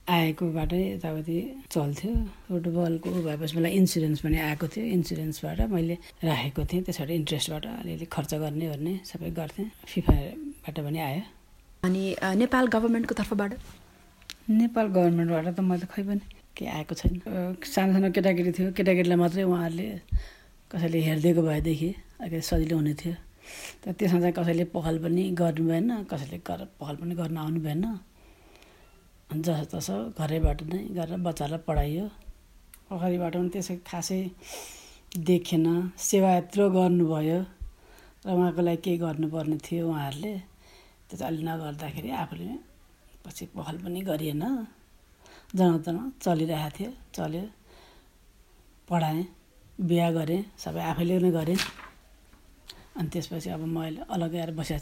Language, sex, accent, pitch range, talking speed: English, female, Indian, 160-185 Hz, 65 wpm